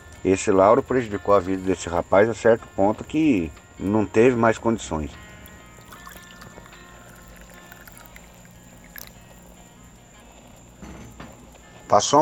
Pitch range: 85-115 Hz